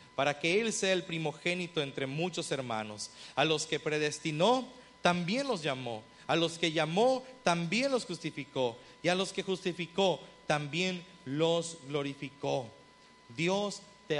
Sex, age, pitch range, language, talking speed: male, 40-59, 160-230 Hz, Spanish, 140 wpm